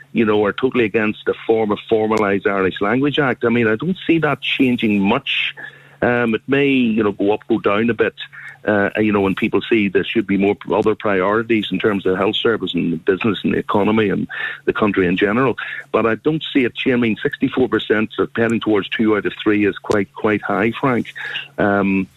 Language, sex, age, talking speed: English, male, 50-69, 210 wpm